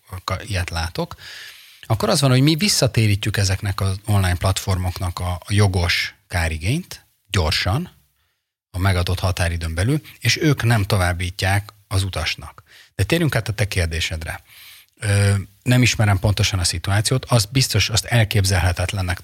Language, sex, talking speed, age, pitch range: Hungarian, male, 130 wpm, 30-49, 90-110 Hz